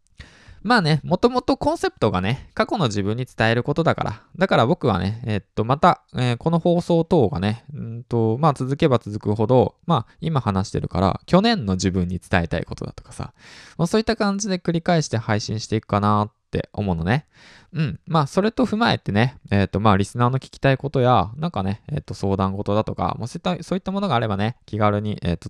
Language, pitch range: Japanese, 95-155 Hz